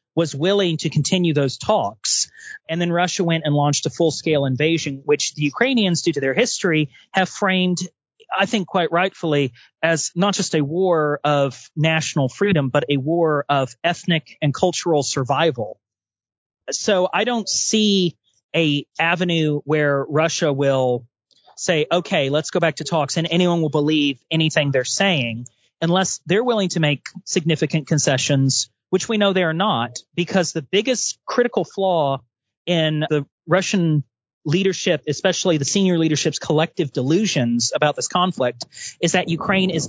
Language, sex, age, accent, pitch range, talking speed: English, male, 30-49, American, 145-185 Hz, 155 wpm